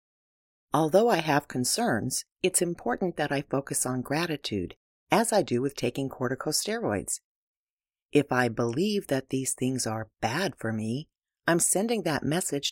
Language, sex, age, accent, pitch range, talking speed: English, female, 40-59, American, 125-180 Hz, 145 wpm